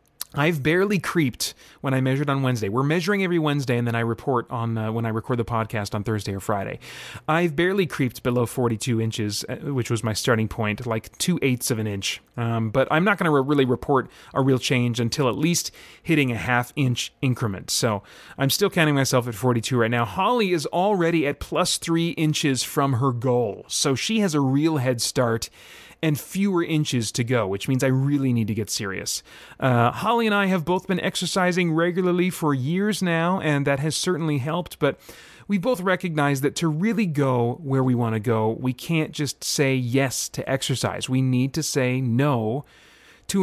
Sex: male